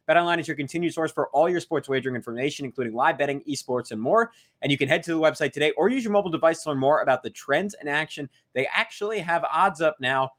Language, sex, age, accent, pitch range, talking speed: English, male, 20-39, American, 120-155 Hz, 255 wpm